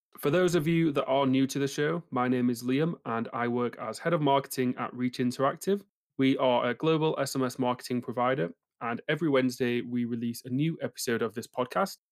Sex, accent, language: male, British, English